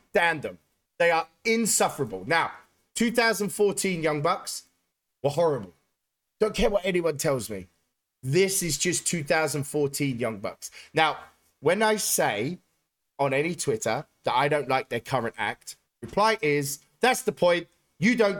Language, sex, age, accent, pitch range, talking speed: English, male, 30-49, British, 140-210 Hz, 140 wpm